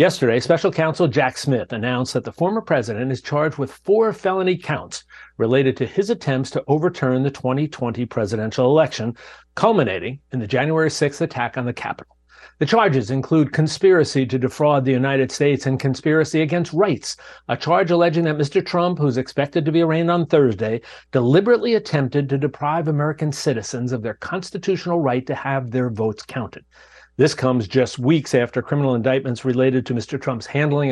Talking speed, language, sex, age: 170 wpm, English, male, 50-69